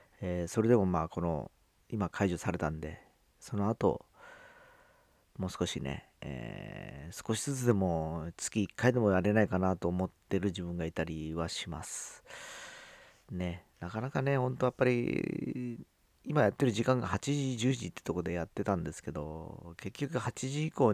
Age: 40-59